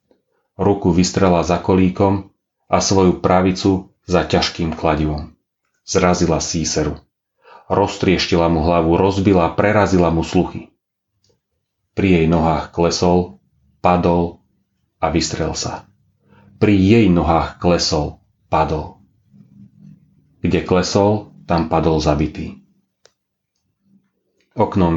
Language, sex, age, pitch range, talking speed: Slovak, male, 30-49, 85-100 Hz, 90 wpm